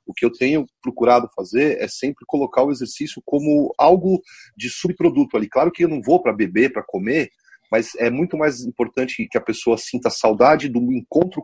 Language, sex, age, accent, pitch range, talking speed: Portuguese, male, 40-59, Brazilian, 120-160 Hz, 195 wpm